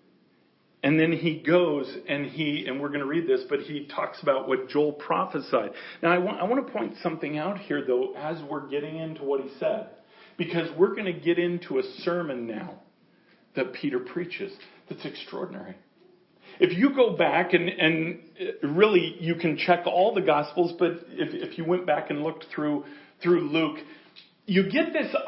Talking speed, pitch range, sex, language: 185 wpm, 160-210 Hz, male, English